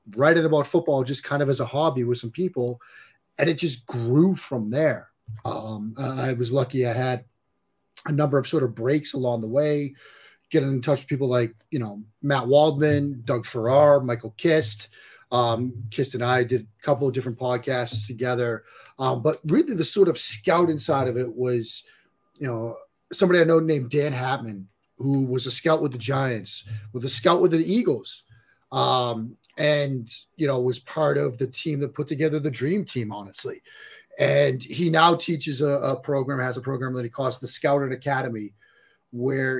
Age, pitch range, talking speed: 30-49, 120-145 Hz, 185 wpm